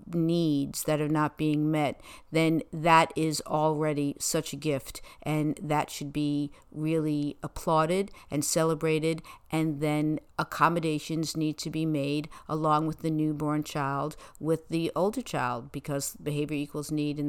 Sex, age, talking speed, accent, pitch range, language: female, 50-69, 145 wpm, American, 145-185 Hz, English